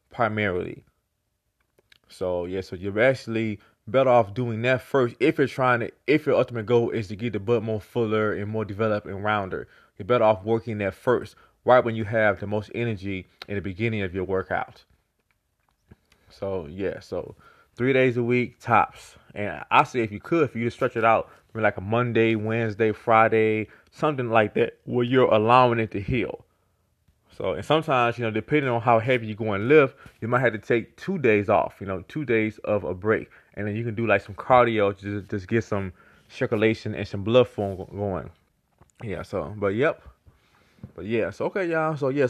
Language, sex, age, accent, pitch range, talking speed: English, male, 20-39, American, 105-125 Hz, 200 wpm